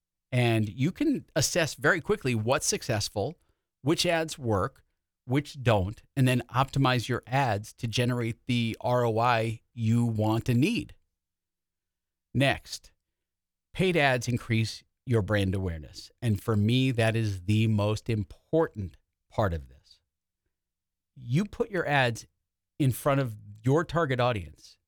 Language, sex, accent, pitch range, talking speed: English, male, American, 100-135 Hz, 130 wpm